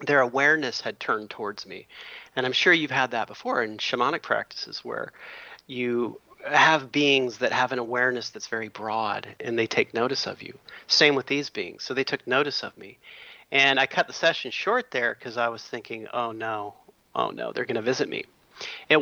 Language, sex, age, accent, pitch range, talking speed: English, male, 30-49, American, 120-145 Hz, 200 wpm